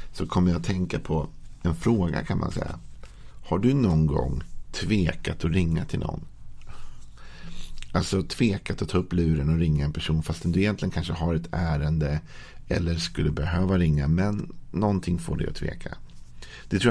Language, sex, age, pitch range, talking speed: Swedish, male, 50-69, 80-105 Hz, 175 wpm